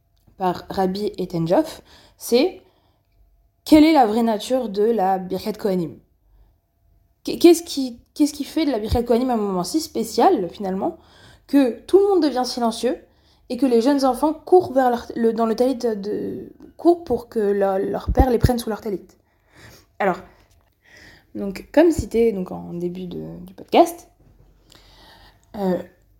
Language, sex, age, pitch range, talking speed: French, female, 20-39, 190-290 Hz, 155 wpm